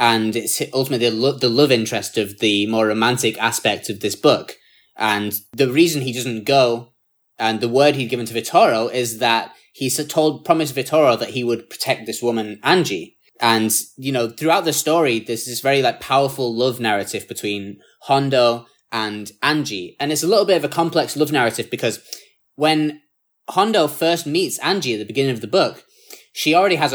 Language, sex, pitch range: English, male, 115-140 Hz